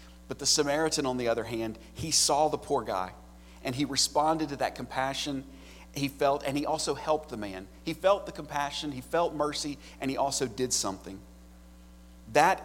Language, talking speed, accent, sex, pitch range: English, 185 wpm, American, male, 105-145 Hz